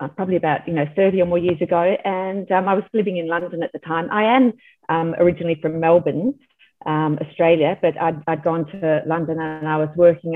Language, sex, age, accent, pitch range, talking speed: English, female, 40-59, Australian, 160-190 Hz, 215 wpm